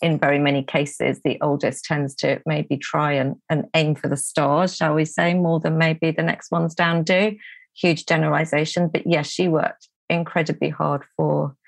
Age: 40-59